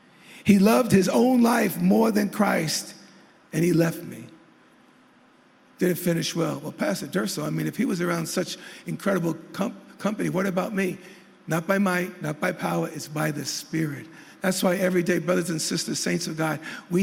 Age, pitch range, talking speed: 50-69, 175-245 Hz, 180 wpm